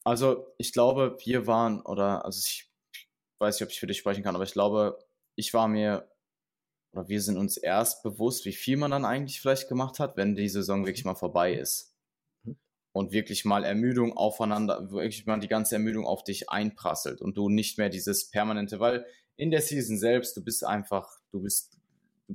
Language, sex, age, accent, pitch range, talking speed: German, male, 20-39, German, 100-120 Hz, 195 wpm